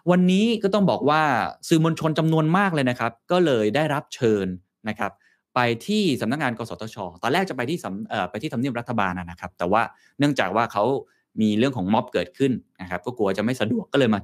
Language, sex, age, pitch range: Thai, male, 20-39, 100-140 Hz